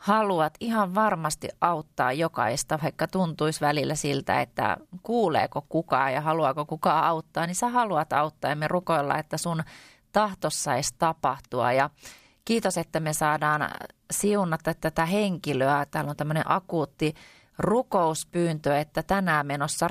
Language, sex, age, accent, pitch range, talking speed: Finnish, female, 30-49, native, 140-175 Hz, 135 wpm